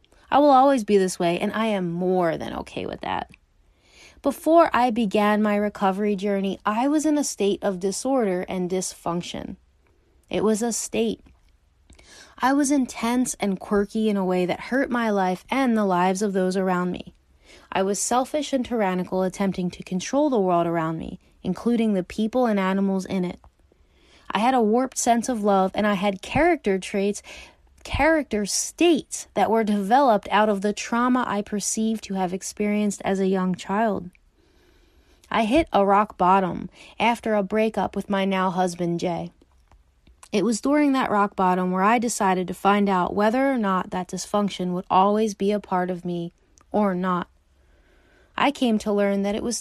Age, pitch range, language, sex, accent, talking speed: 20-39, 185-230 Hz, English, female, American, 180 wpm